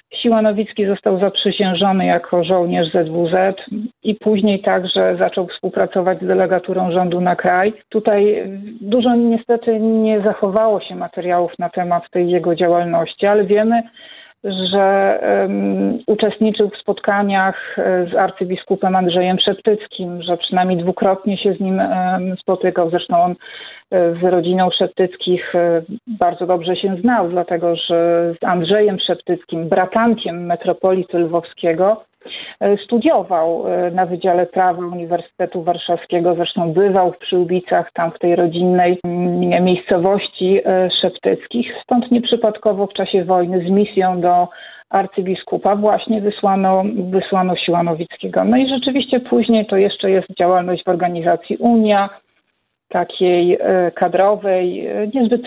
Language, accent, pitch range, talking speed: Polish, native, 175-205 Hz, 115 wpm